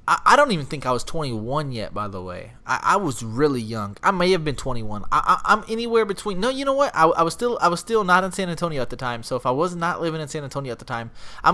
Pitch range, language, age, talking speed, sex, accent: 125-185 Hz, English, 20-39, 295 wpm, male, American